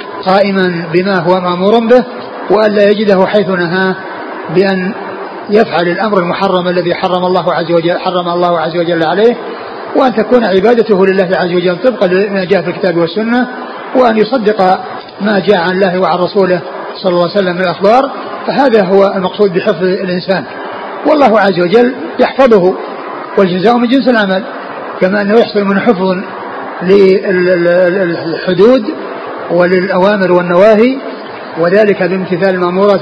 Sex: male